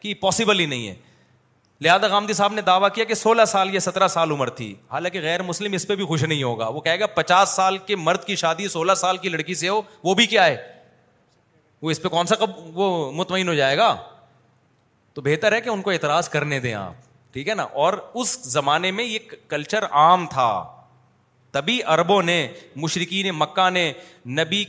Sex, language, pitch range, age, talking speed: male, Urdu, 145-205 Hz, 30-49, 200 wpm